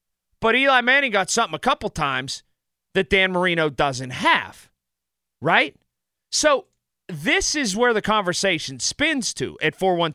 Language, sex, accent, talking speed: English, male, American, 150 wpm